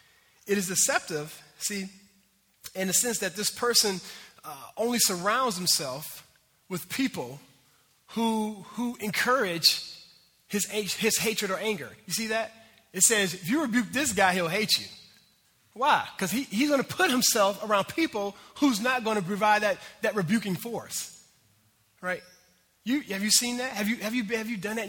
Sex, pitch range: male, 160-215 Hz